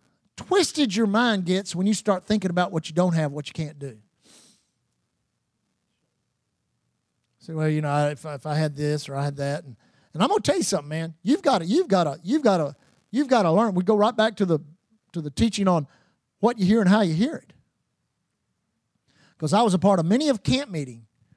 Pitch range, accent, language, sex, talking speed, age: 165-215 Hz, American, English, male, 230 wpm, 50-69